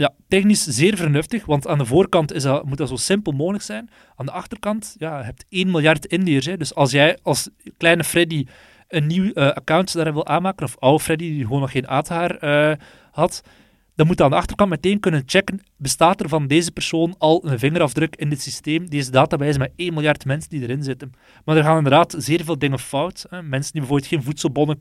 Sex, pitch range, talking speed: male, 140-170 Hz, 220 wpm